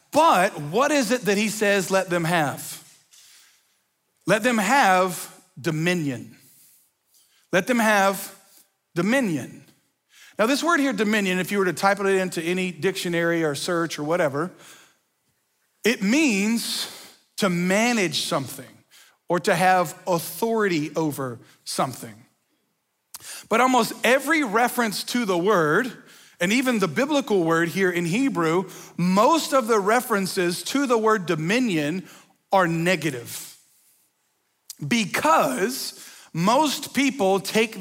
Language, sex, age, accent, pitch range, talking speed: English, male, 40-59, American, 175-220 Hz, 120 wpm